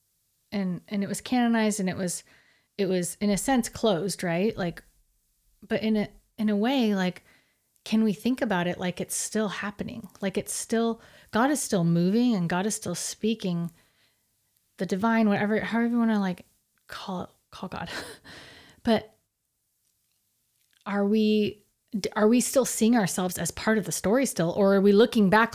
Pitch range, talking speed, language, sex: 175-215 Hz, 175 wpm, English, female